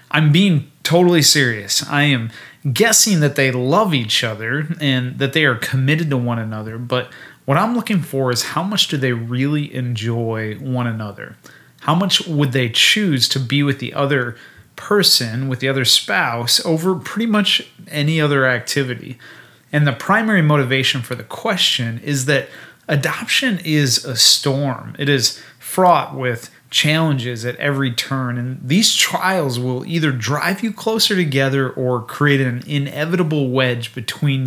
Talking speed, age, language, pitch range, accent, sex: 160 wpm, 30-49, English, 125-160 Hz, American, male